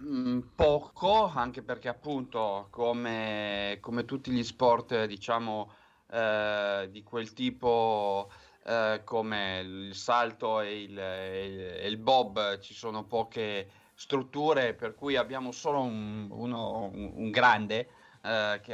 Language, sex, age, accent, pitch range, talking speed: Italian, male, 30-49, native, 105-135 Hz, 130 wpm